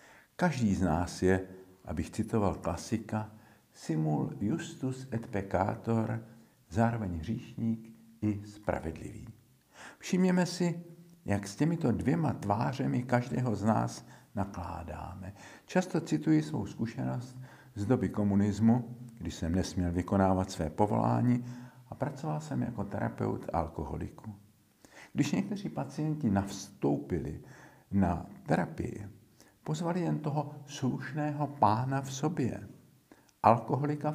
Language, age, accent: Czech, 50-69, native